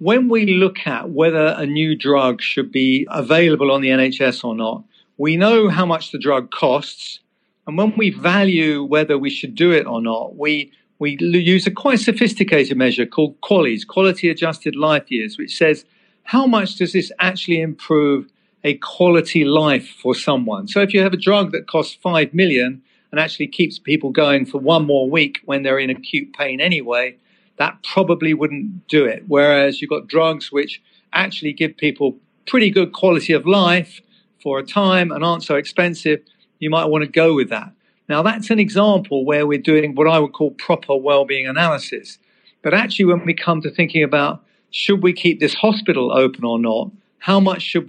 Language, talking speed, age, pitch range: English, 190 wpm, 50-69, 145-190 Hz